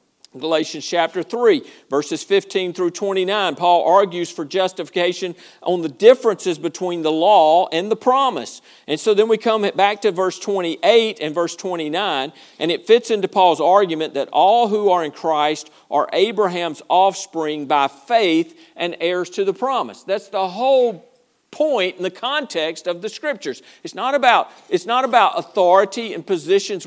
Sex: male